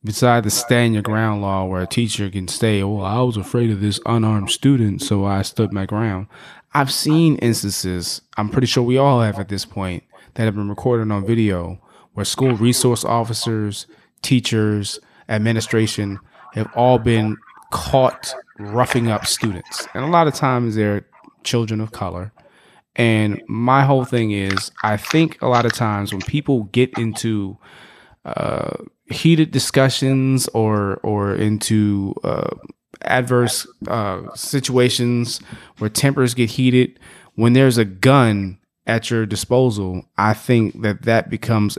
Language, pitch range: English, 100-120 Hz